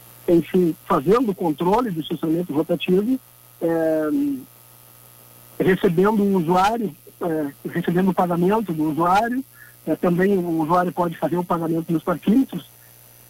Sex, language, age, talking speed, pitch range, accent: male, Portuguese, 60-79, 125 wpm, 160-215 Hz, Brazilian